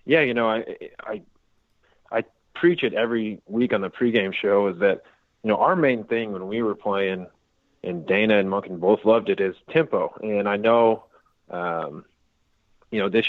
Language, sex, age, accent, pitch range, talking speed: English, male, 30-49, American, 100-115 Hz, 185 wpm